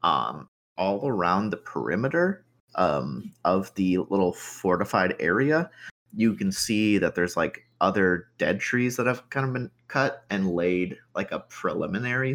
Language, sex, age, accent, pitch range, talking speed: English, male, 30-49, American, 90-130 Hz, 150 wpm